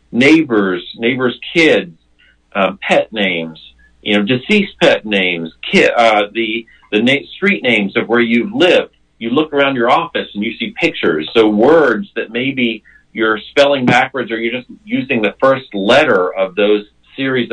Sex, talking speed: male, 160 wpm